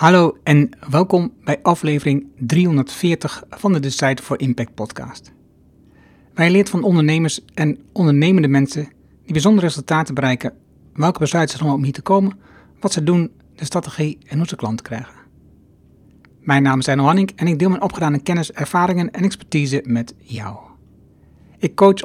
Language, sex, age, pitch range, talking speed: Dutch, male, 60-79, 140-180 Hz, 160 wpm